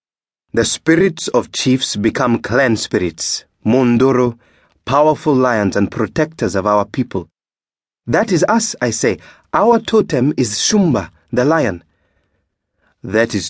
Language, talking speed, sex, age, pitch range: English, 125 wpm, male, 30-49, 100-130 Hz